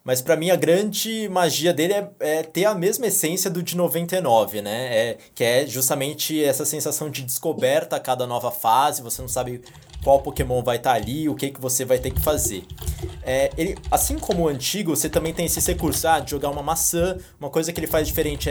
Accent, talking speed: Brazilian, 220 wpm